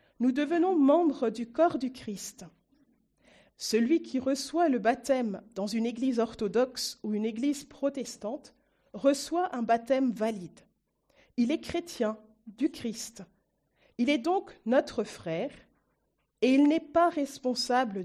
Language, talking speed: French, 130 wpm